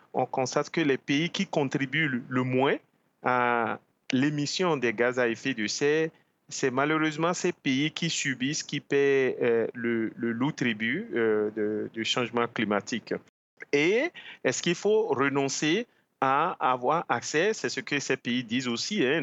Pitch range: 120-165 Hz